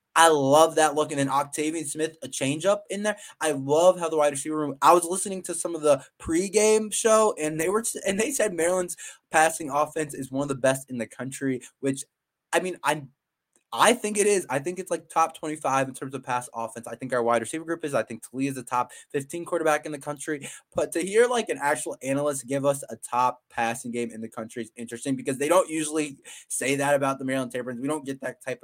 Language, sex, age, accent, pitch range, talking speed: English, male, 20-39, American, 125-175 Hz, 245 wpm